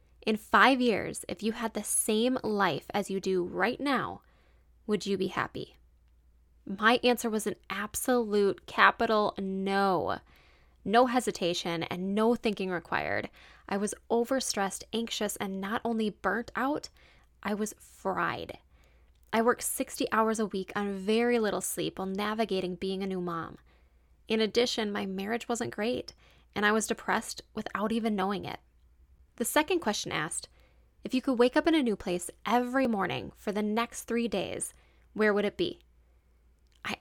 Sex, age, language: female, 10-29, English